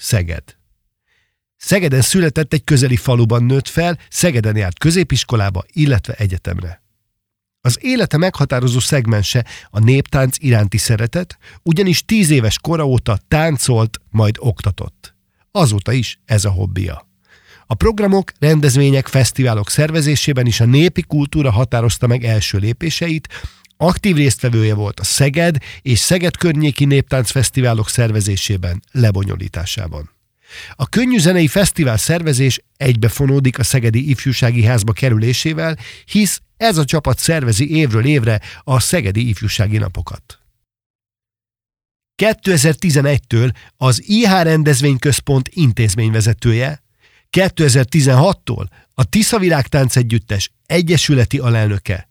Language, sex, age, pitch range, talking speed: Hungarian, male, 50-69, 110-150 Hz, 105 wpm